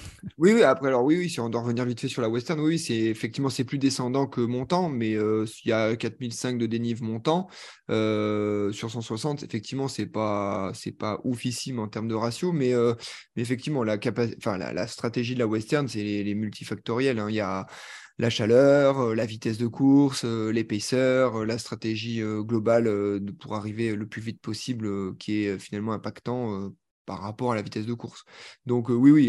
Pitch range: 110-135 Hz